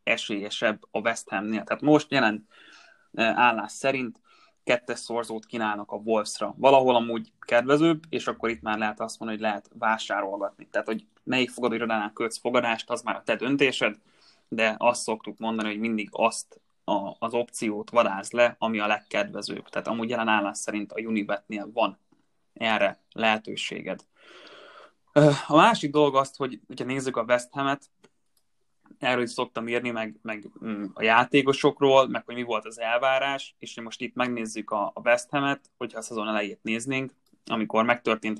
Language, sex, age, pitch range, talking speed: Hungarian, male, 20-39, 110-130 Hz, 160 wpm